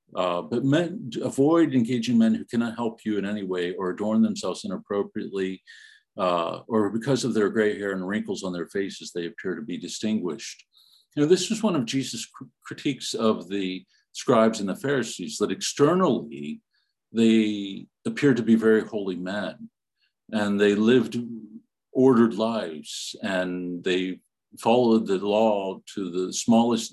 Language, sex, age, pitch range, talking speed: English, male, 50-69, 100-130 Hz, 155 wpm